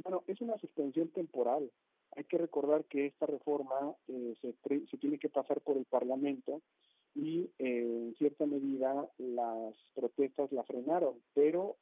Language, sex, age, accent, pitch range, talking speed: Spanish, male, 50-69, Mexican, 135-160 Hz, 150 wpm